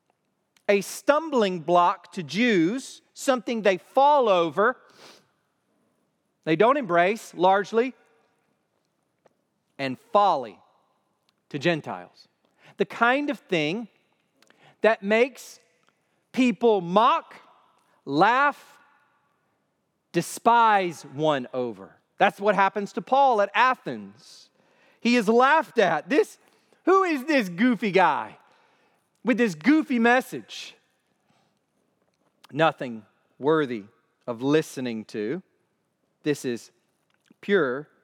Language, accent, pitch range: English, American, 155-235 Hz